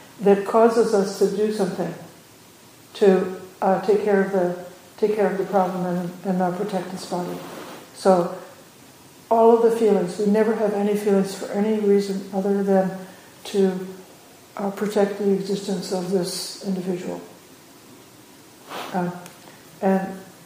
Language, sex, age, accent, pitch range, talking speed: English, female, 60-79, American, 185-205 Hz, 140 wpm